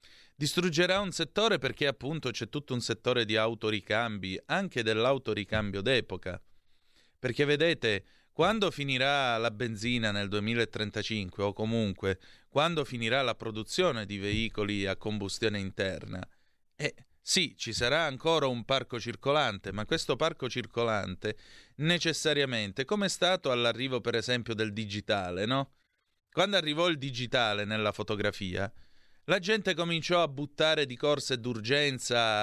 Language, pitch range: Italian, 110-145 Hz